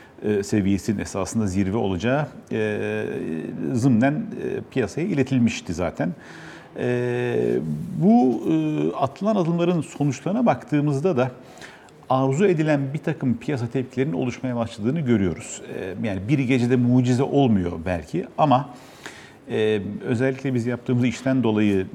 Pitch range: 105-135 Hz